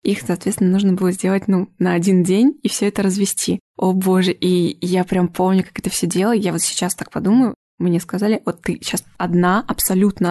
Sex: female